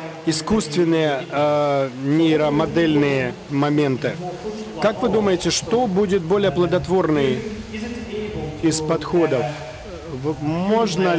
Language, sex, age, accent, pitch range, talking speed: Russian, male, 40-59, native, 145-180 Hz, 75 wpm